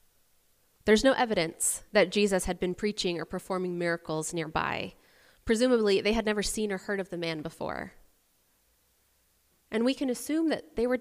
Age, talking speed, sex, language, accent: 20-39, 165 wpm, female, English, American